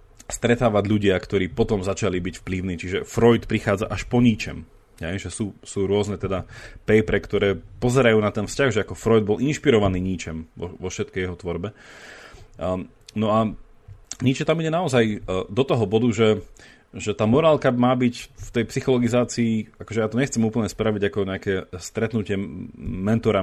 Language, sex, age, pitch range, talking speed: Slovak, male, 30-49, 100-120 Hz, 160 wpm